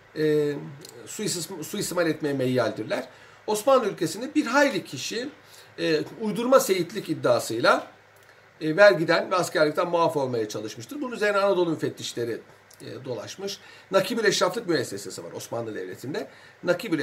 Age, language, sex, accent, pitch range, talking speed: 60-79, Turkish, male, native, 155-235 Hz, 125 wpm